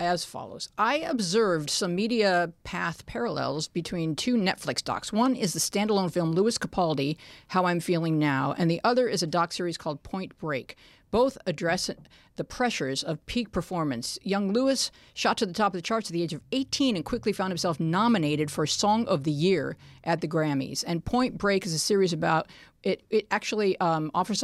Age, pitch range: 50-69, 150-200 Hz